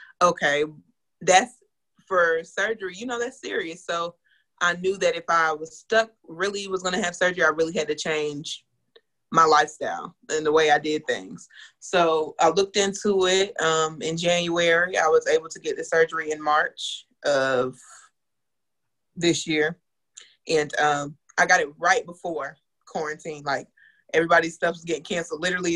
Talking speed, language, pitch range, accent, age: 165 wpm, English, 155-185 Hz, American, 20-39